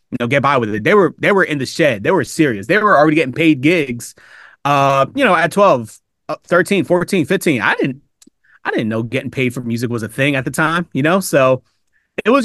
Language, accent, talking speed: English, American, 240 wpm